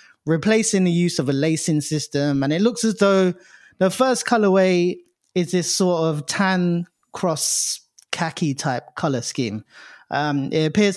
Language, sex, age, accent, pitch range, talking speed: English, male, 20-39, British, 150-190 Hz, 155 wpm